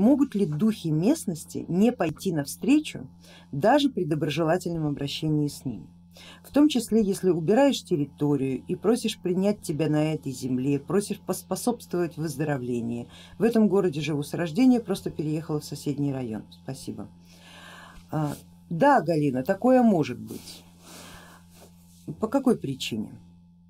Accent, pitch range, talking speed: native, 120-195 Hz, 125 wpm